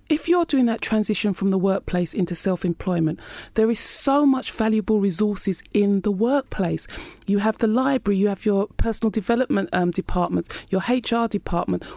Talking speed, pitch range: 165 wpm, 175-220 Hz